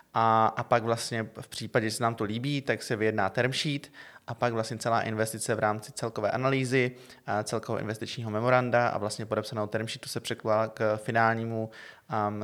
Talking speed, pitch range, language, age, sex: 175 wpm, 105-115 Hz, Czech, 20-39, male